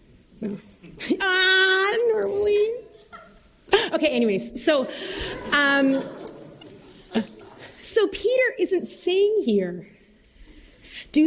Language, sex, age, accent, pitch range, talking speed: English, female, 30-49, American, 220-300 Hz, 75 wpm